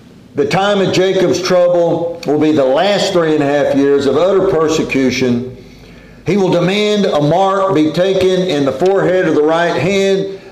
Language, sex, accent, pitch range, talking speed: English, male, American, 165-200 Hz, 175 wpm